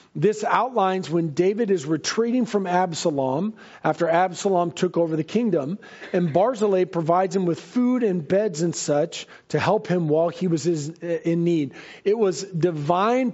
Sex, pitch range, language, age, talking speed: male, 170-200 Hz, English, 40-59, 155 wpm